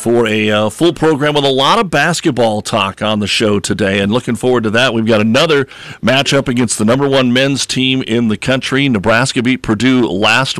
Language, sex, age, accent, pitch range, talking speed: English, male, 50-69, American, 110-130 Hz, 210 wpm